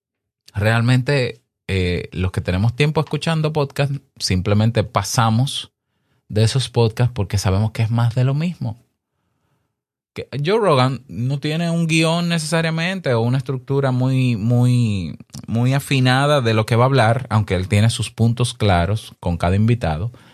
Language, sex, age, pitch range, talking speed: Spanish, male, 30-49, 95-130 Hz, 150 wpm